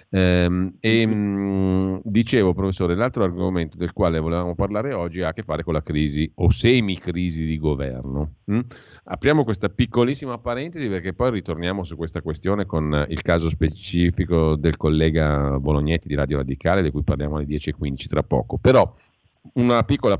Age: 40-59